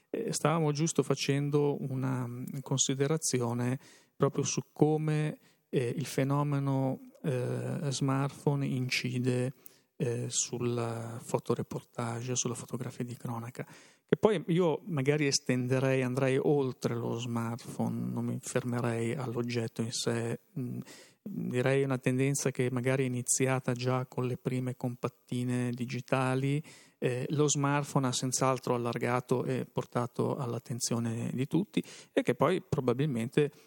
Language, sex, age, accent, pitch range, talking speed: Italian, male, 40-59, native, 120-145 Hz, 105 wpm